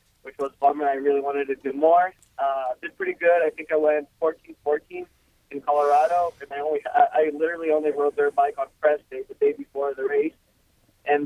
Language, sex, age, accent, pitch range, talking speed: English, male, 20-39, American, 145-215 Hz, 210 wpm